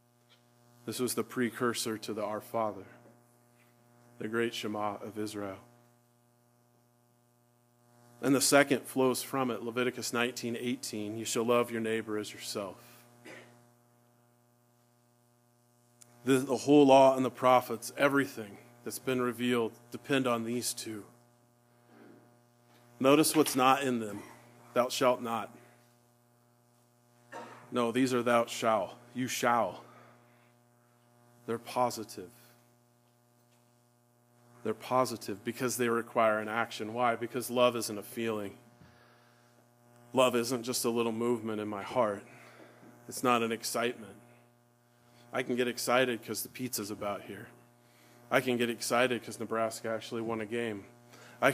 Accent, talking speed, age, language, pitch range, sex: American, 120 wpm, 40-59, English, 115-120 Hz, male